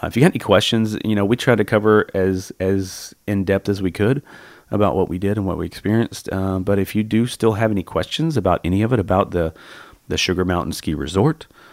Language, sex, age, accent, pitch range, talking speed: English, male, 30-49, American, 90-105 Hz, 235 wpm